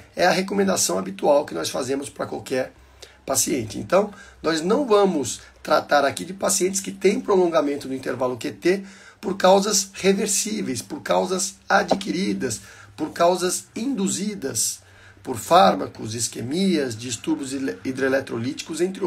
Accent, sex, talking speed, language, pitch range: Brazilian, male, 125 wpm, Portuguese, 125-190 Hz